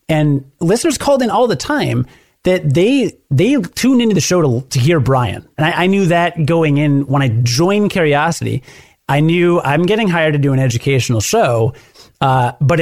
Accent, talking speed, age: American, 190 wpm, 30-49